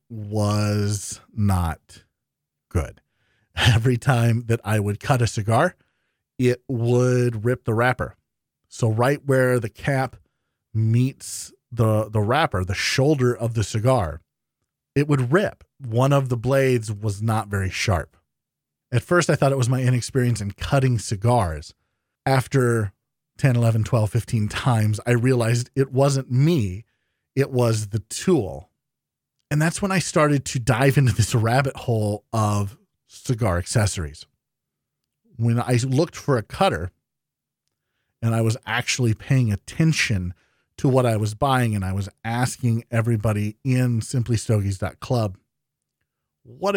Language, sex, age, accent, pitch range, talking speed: English, male, 40-59, American, 105-130 Hz, 135 wpm